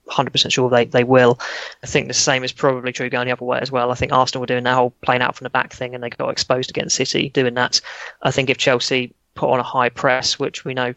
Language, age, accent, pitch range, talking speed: English, 20-39, British, 130-145 Hz, 275 wpm